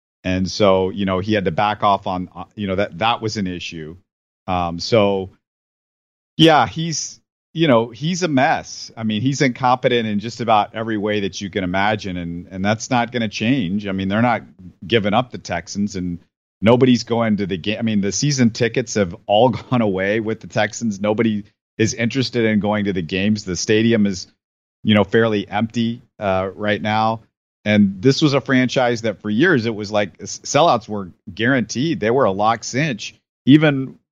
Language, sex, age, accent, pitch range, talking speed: English, male, 50-69, American, 100-120 Hz, 195 wpm